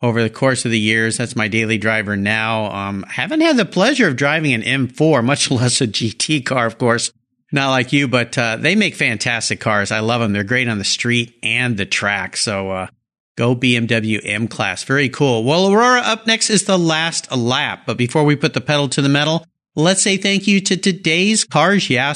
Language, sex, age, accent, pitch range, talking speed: English, male, 50-69, American, 120-185 Hz, 215 wpm